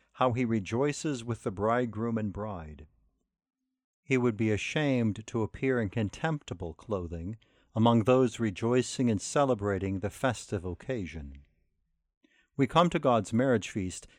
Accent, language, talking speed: American, English, 130 wpm